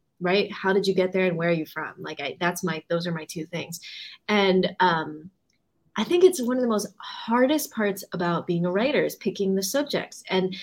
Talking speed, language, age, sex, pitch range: 220 wpm, English, 20-39, female, 175-215 Hz